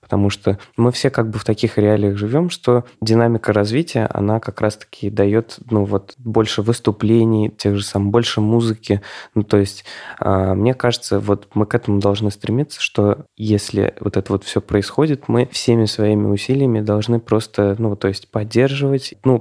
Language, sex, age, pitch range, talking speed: Russian, male, 20-39, 100-115 Hz, 170 wpm